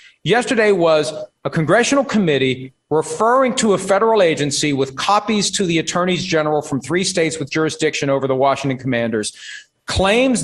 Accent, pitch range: American, 145-200 Hz